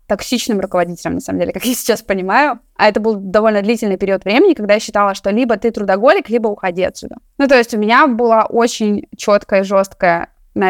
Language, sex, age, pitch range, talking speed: Russian, female, 20-39, 195-230 Hz, 210 wpm